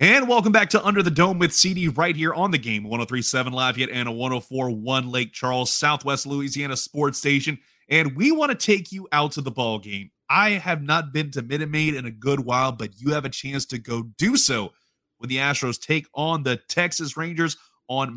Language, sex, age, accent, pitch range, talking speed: English, male, 30-49, American, 130-165 Hz, 220 wpm